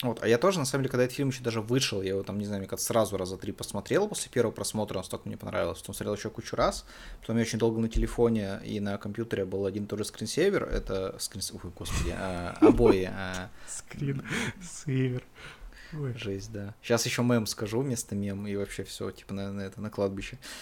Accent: native